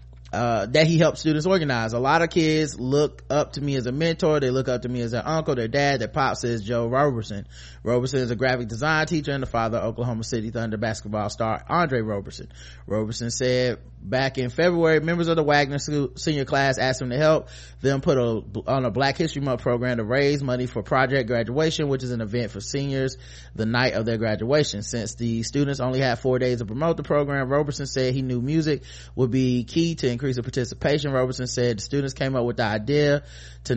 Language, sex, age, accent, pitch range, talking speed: English, male, 30-49, American, 115-145 Hz, 220 wpm